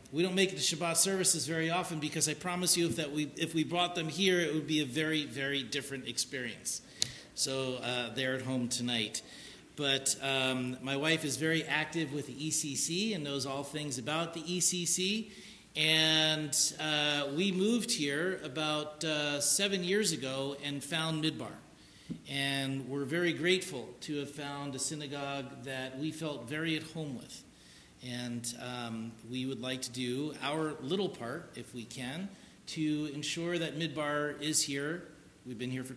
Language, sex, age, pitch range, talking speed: English, male, 40-59, 135-170 Hz, 170 wpm